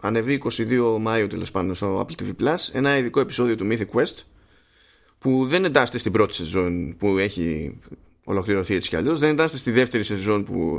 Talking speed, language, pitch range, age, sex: 185 wpm, Greek, 100-135 Hz, 20-39, male